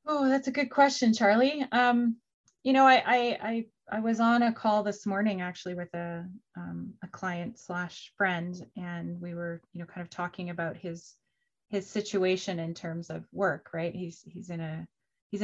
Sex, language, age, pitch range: female, English, 20-39, 170-210 Hz